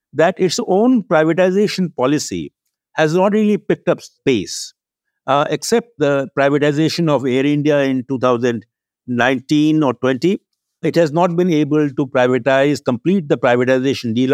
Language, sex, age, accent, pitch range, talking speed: English, male, 60-79, Indian, 135-185 Hz, 140 wpm